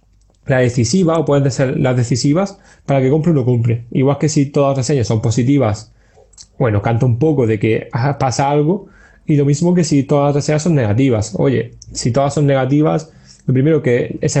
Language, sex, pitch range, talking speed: Spanish, male, 120-155 Hz, 200 wpm